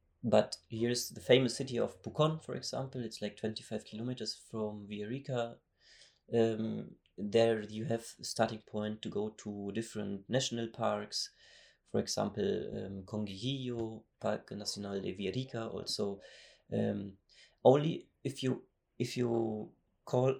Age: 30-49